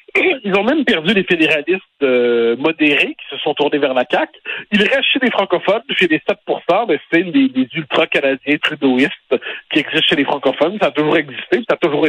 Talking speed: 200 wpm